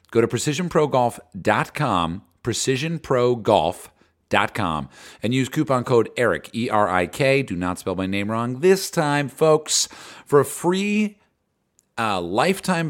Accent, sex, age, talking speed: American, male, 40-59, 110 wpm